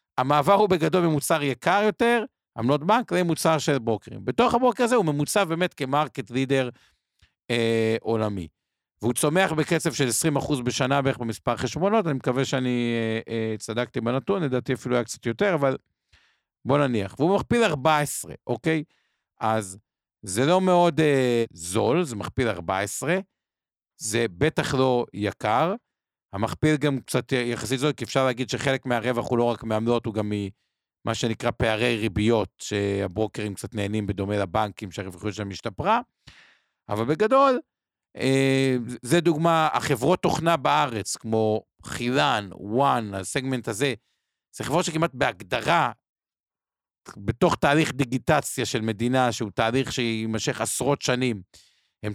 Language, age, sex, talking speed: Hebrew, 50-69, male, 135 wpm